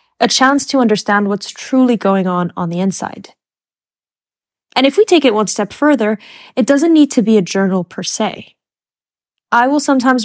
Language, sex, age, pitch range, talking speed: English, female, 10-29, 195-245 Hz, 180 wpm